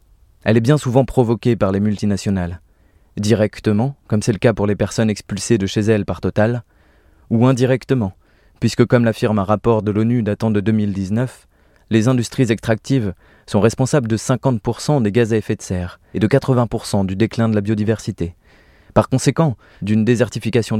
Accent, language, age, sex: French, French, 20-39, male